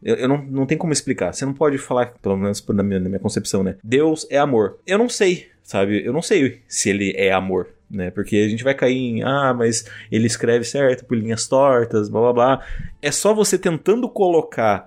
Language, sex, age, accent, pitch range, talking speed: Portuguese, male, 20-39, Brazilian, 110-140 Hz, 220 wpm